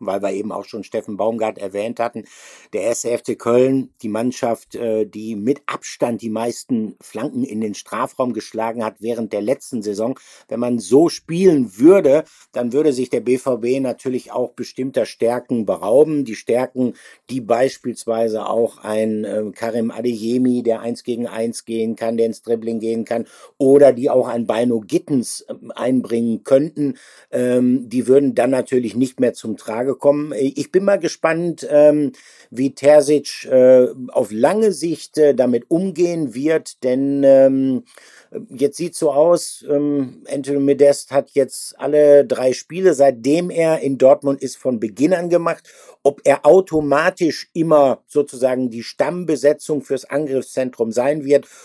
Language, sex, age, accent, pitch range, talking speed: German, male, 60-79, German, 120-145 Hz, 150 wpm